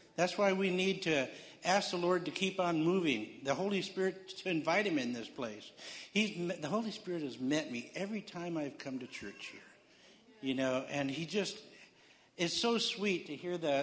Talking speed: 200 wpm